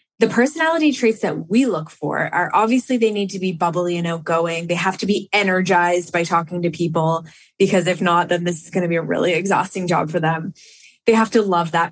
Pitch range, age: 175-220 Hz, 20-39